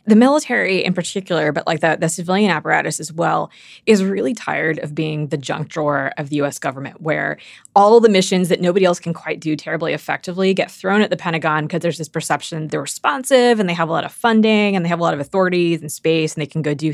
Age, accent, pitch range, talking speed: 20-39, American, 160-205 Hz, 245 wpm